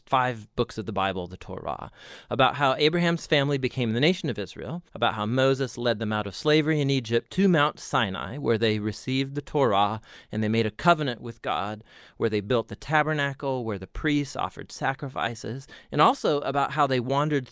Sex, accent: male, American